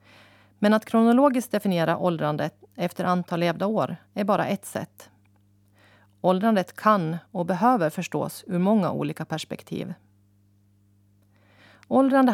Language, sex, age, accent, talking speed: Swedish, female, 30-49, native, 110 wpm